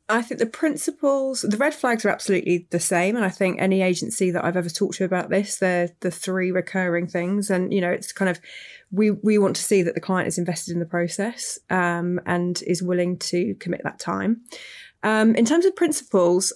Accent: British